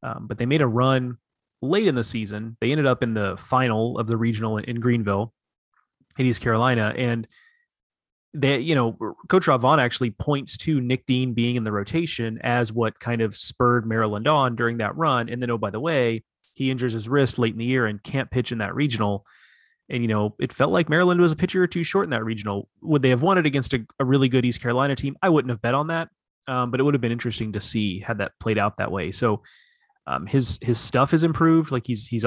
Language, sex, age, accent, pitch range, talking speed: English, male, 30-49, American, 110-130 Hz, 240 wpm